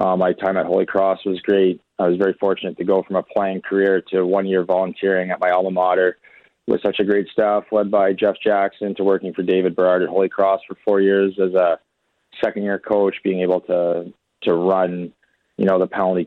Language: English